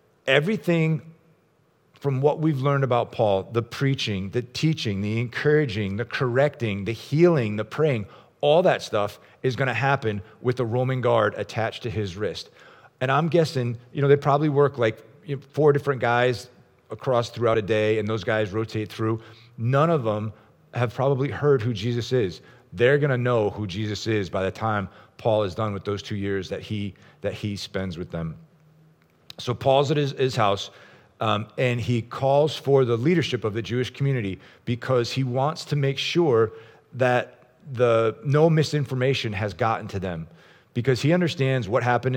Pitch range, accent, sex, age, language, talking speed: 110-140 Hz, American, male, 40-59, English, 180 wpm